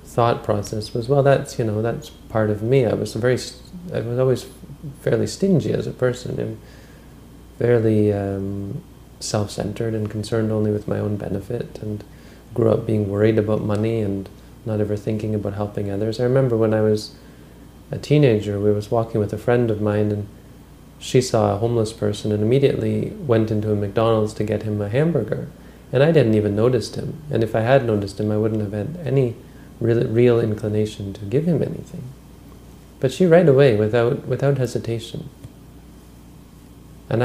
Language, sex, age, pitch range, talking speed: English, male, 30-49, 105-125 Hz, 180 wpm